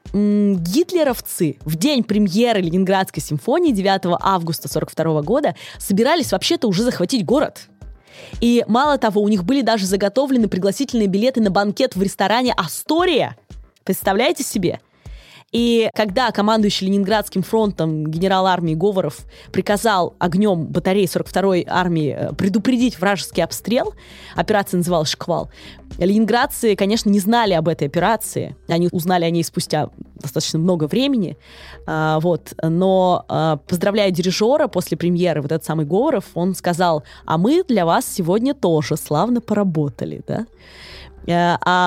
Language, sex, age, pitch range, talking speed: Russian, female, 20-39, 165-210 Hz, 125 wpm